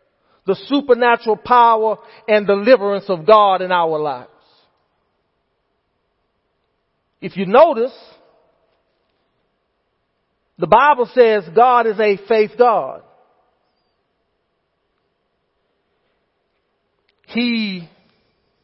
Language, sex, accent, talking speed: English, male, American, 70 wpm